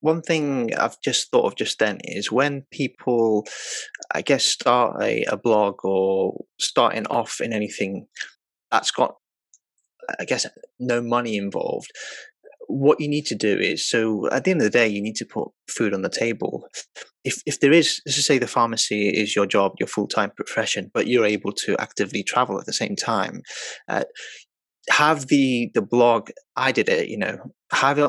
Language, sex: English, male